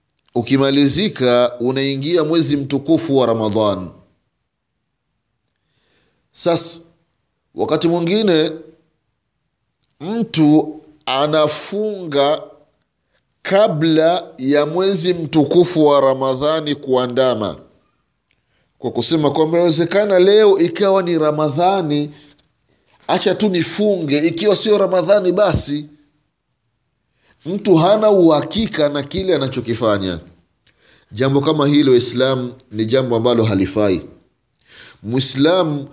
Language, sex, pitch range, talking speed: Swahili, male, 125-165 Hz, 80 wpm